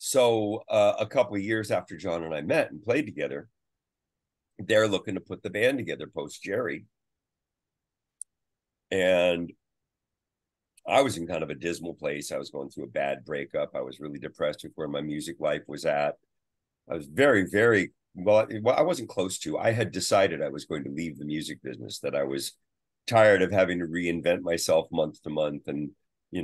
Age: 50-69